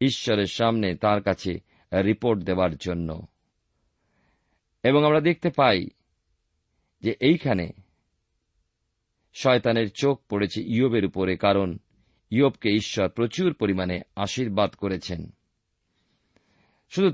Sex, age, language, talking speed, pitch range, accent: male, 50-69, Bengali, 90 wpm, 95-120 Hz, native